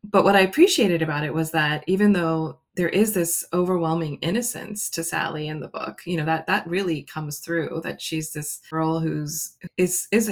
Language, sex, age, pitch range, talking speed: English, female, 20-39, 155-180 Hz, 190 wpm